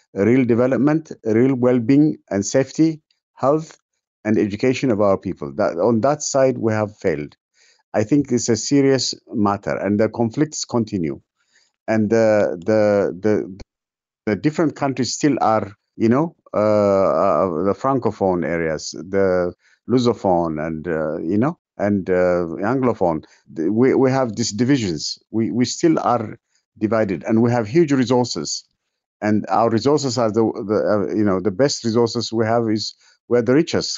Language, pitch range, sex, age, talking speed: English, 100-135 Hz, male, 50-69, 155 wpm